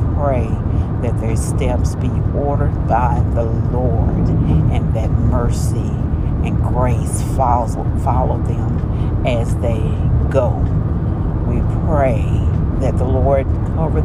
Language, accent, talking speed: English, American, 105 wpm